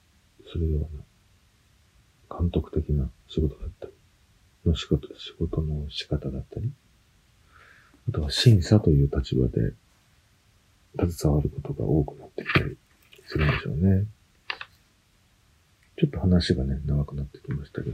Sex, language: male, Japanese